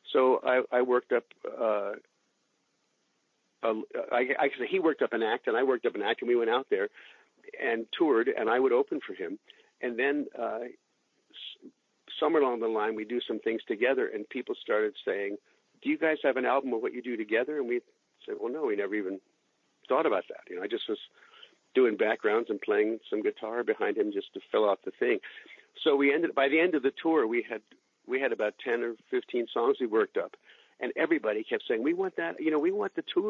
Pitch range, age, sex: 340-425 Hz, 50-69, male